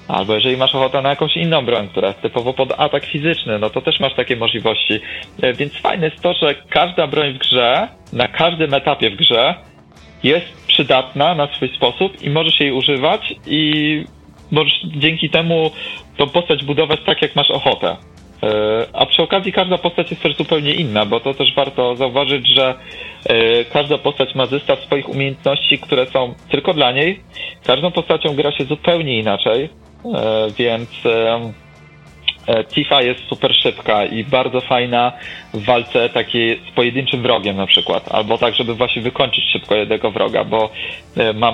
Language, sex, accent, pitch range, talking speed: Polish, male, native, 120-145 Hz, 160 wpm